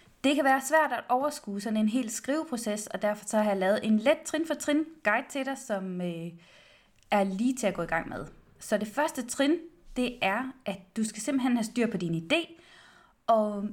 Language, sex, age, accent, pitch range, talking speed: Danish, female, 20-39, native, 195-255 Hz, 210 wpm